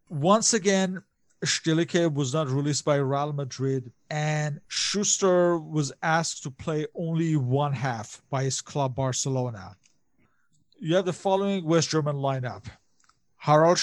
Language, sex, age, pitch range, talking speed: English, male, 50-69, 130-155 Hz, 130 wpm